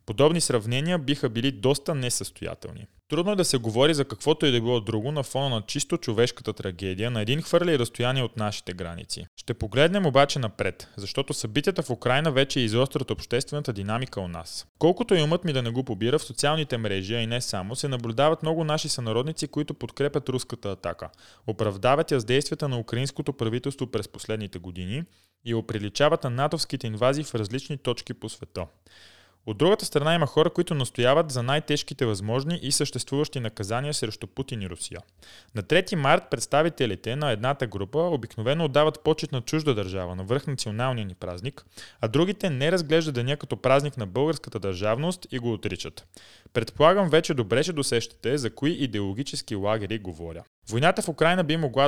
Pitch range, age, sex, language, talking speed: 110-150 Hz, 20-39, male, Bulgarian, 175 wpm